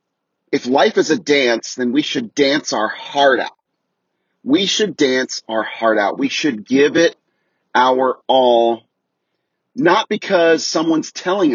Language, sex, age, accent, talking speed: English, male, 30-49, American, 145 wpm